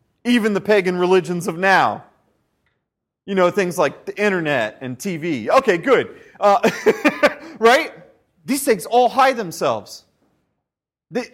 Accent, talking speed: American, 125 wpm